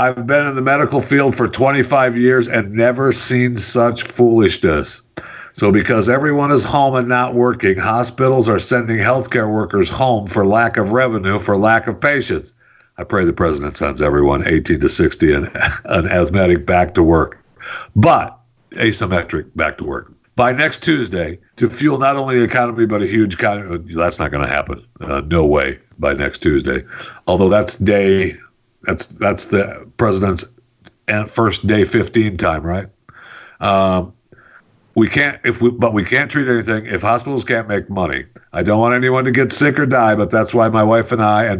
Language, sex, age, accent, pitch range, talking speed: English, male, 60-79, American, 95-120 Hz, 180 wpm